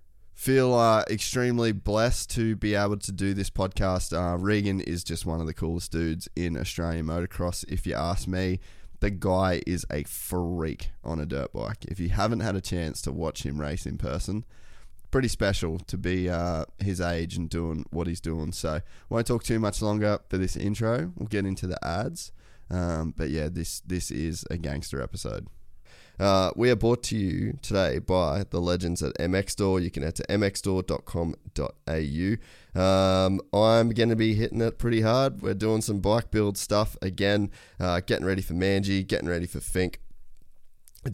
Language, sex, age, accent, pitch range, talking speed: English, male, 20-39, Australian, 85-105 Hz, 180 wpm